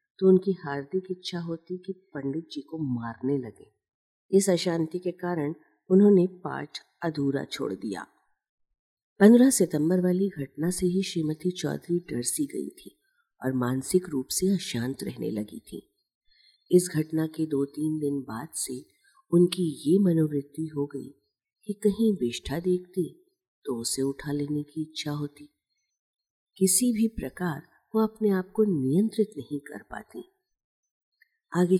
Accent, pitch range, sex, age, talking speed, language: native, 140-190 Hz, female, 50-69, 140 wpm, Hindi